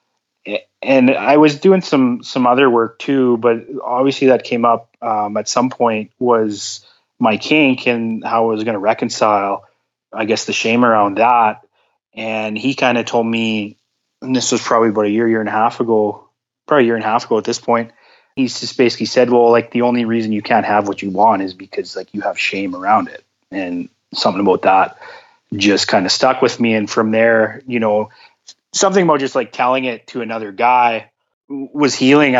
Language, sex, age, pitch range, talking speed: English, male, 20-39, 110-130 Hz, 205 wpm